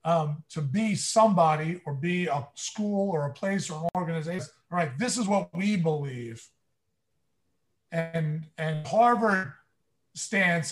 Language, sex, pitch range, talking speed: English, male, 150-200 Hz, 140 wpm